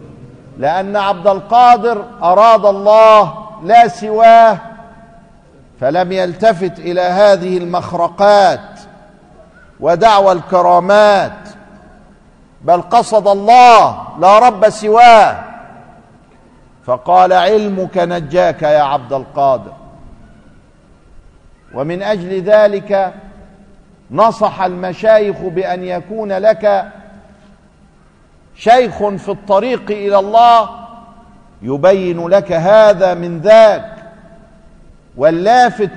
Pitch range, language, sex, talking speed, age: 185-220 Hz, Arabic, male, 75 wpm, 50-69